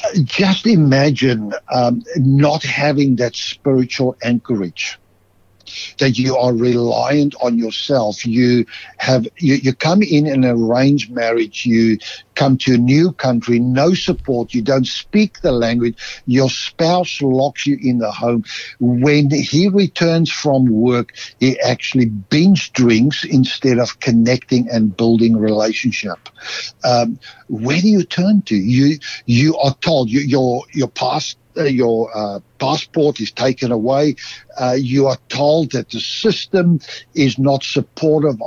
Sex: male